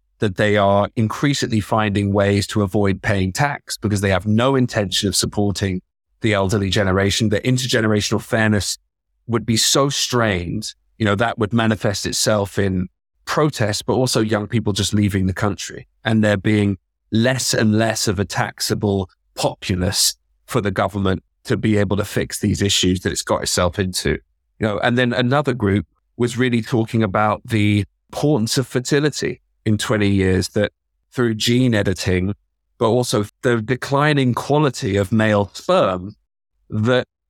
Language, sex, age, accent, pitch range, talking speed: English, male, 30-49, British, 100-120 Hz, 160 wpm